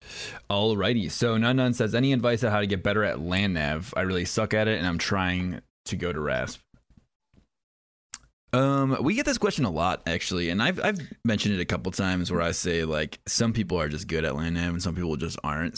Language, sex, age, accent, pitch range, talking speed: English, male, 20-39, American, 85-105 Hz, 225 wpm